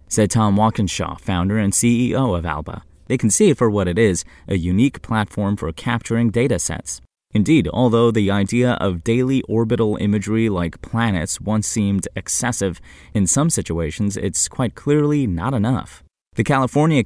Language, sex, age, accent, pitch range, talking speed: English, male, 20-39, American, 90-120 Hz, 160 wpm